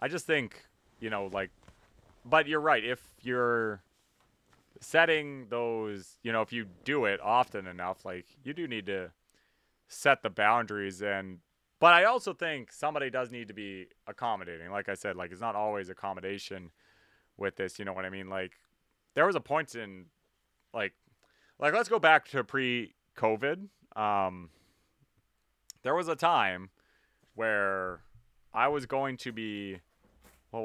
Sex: male